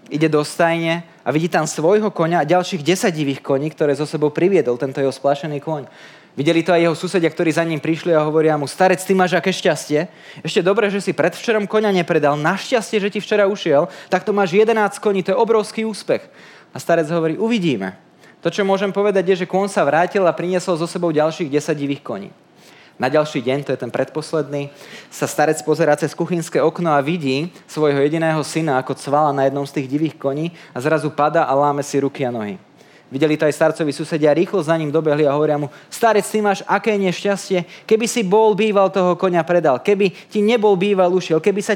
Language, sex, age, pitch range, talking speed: Slovak, male, 20-39, 150-190 Hz, 210 wpm